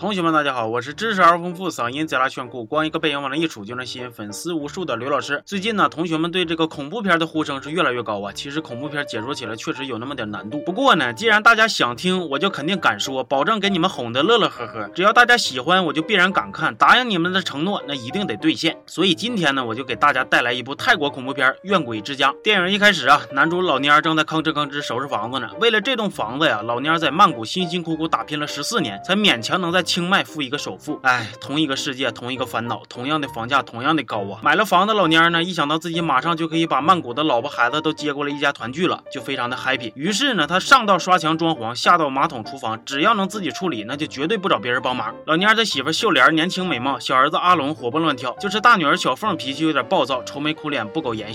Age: 20-39